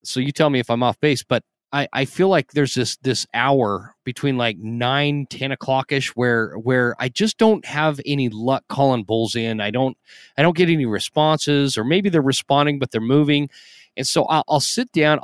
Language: English